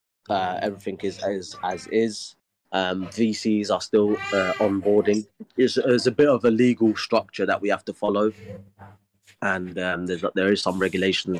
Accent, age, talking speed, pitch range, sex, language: British, 20-39, 170 wpm, 85-100 Hz, male, English